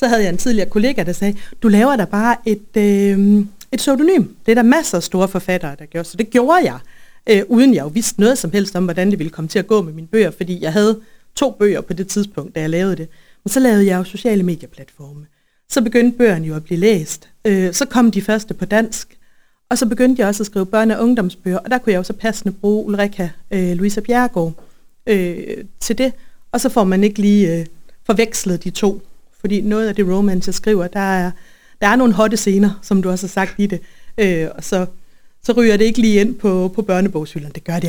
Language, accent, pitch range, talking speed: Danish, native, 175-220 Hz, 240 wpm